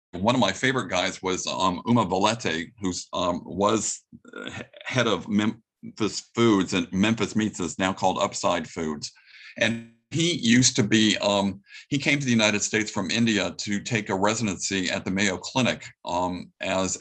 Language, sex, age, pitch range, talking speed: English, male, 50-69, 95-115 Hz, 165 wpm